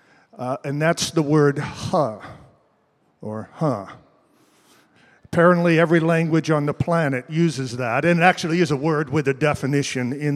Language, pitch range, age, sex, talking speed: English, 150-180 Hz, 50-69, male, 150 wpm